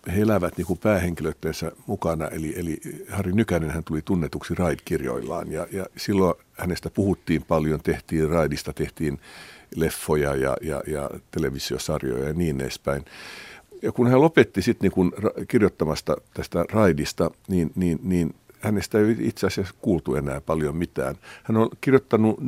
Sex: male